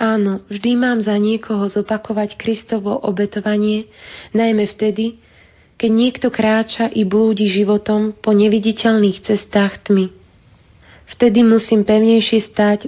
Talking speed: 110 wpm